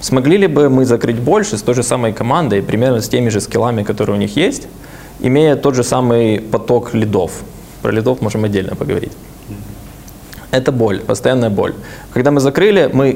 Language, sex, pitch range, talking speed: Ukrainian, male, 110-130 Hz, 180 wpm